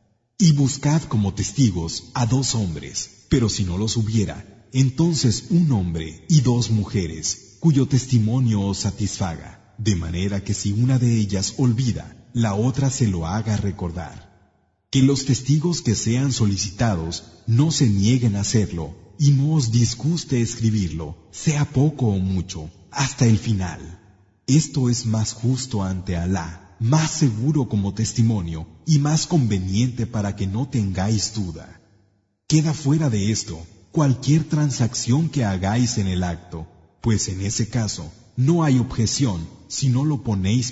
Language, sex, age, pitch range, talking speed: Arabic, male, 40-59, 100-130 Hz, 145 wpm